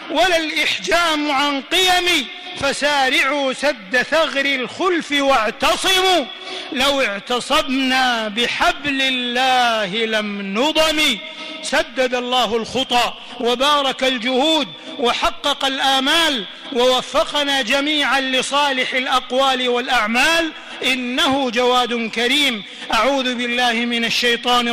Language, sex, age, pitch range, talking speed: Arabic, male, 50-69, 230-285 Hz, 85 wpm